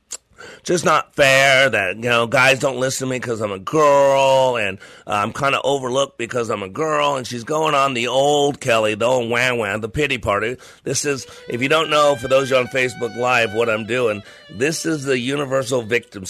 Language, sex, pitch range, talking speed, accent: English, male, 125-155 Hz, 220 wpm, American